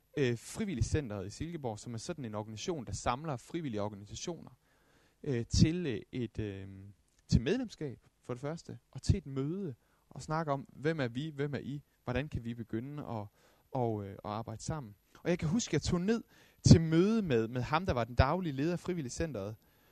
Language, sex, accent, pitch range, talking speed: Danish, male, native, 105-145 Hz, 195 wpm